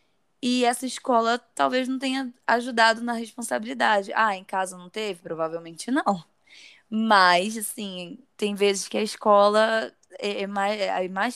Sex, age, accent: female, 10-29, Brazilian